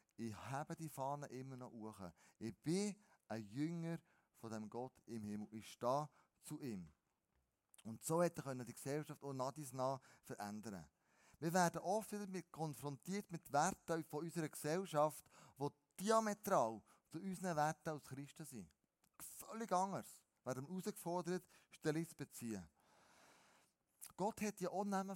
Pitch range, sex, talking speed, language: 135-185 Hz, male, 145 wpm, German